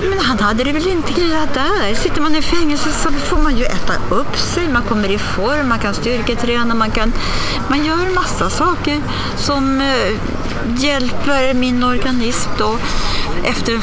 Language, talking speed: Swedish, 155 wpm